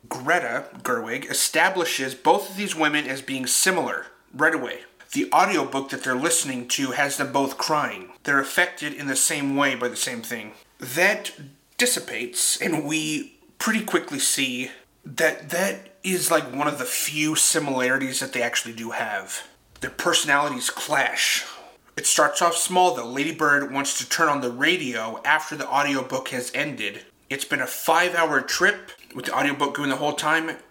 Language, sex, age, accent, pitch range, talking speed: English, male, 30-49, American, 130-160 Hz, 170 wpm